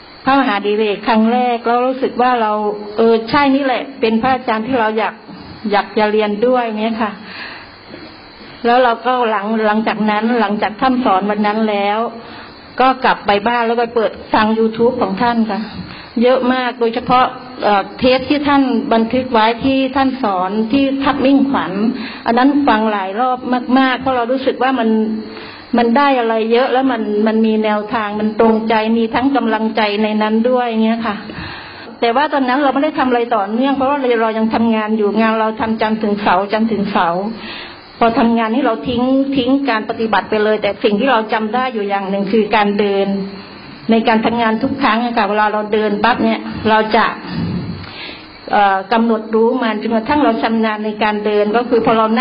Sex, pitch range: female, 215-250 Hz